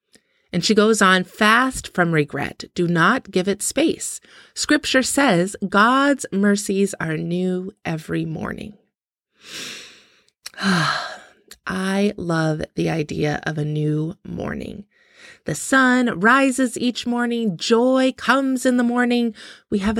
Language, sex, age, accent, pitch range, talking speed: English, female, 30-49, American, 200-255 Hz, 120 wpm